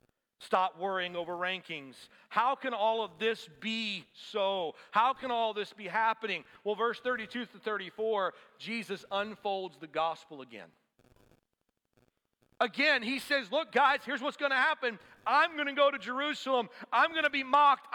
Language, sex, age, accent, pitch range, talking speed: English, male, 40-59, American, 215-280 Hz, 160 wpm